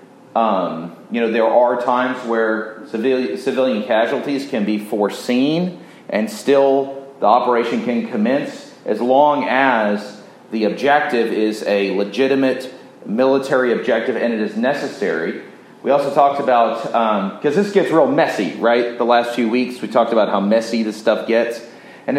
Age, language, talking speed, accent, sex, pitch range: 30-49, English, 155 wpm, American, male, 115-145 Hz